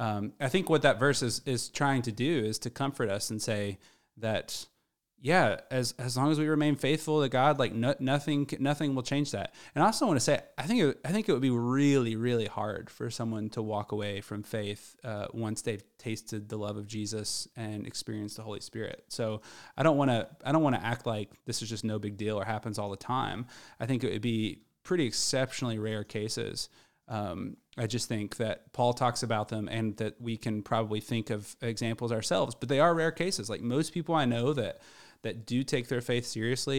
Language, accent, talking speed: English, American, 225 wpm